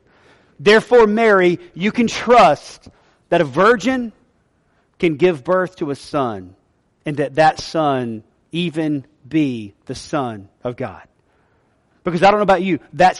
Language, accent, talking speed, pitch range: English, American, 140 wpm, 140-175 Hz